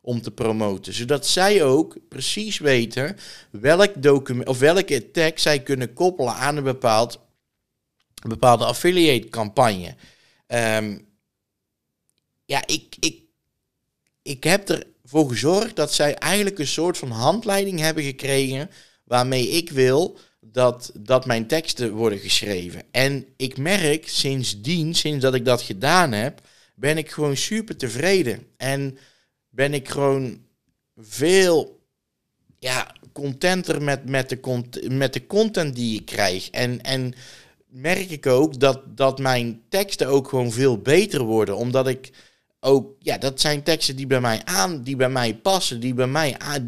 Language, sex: Dutch, male